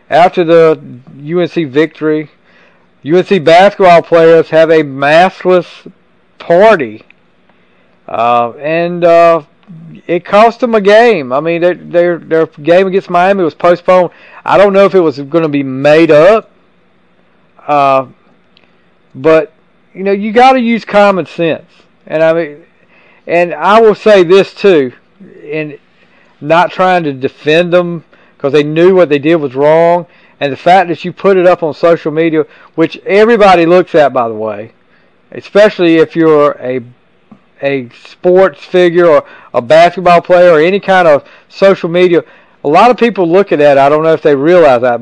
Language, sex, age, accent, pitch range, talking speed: English, male, 40-59, American, 140-180 Hz, 160 wpm